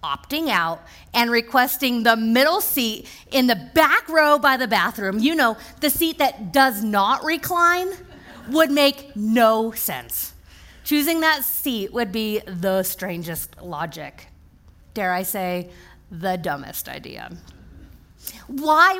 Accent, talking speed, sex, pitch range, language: American, 130 wpm, female, 195-275 Hz, English